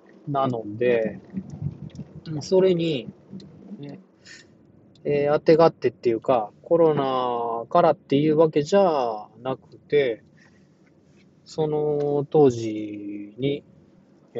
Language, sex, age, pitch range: Japanese, male, 20-39, 115-185 Hz